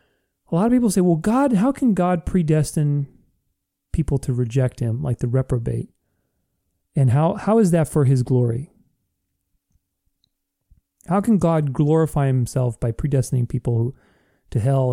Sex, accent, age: male, American, 30-49